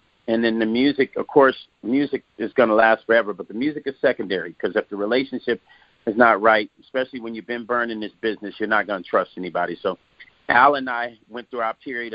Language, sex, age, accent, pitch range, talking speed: English, male, 40-59, American, 100-120 Hz, 225 wpm